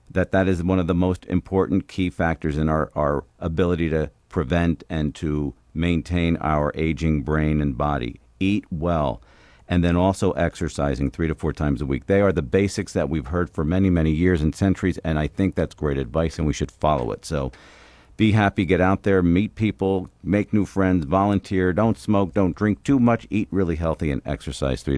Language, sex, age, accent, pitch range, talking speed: English, male, 50-69, American, 75-95 Hz, 200 wpm